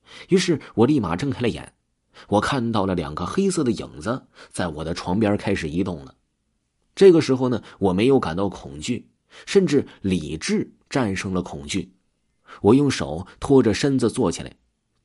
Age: 30-49